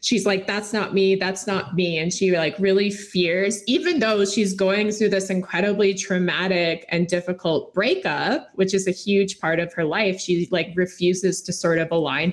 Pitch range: 175-225 Hz